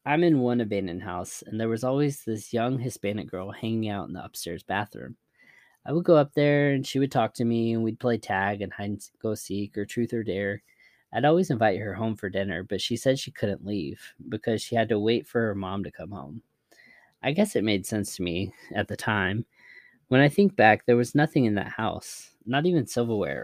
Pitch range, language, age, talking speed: 100-125 Hz, English, 20-39, 230 wpm